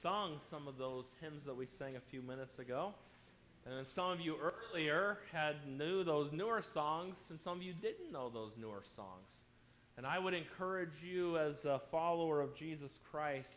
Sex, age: male, 30-49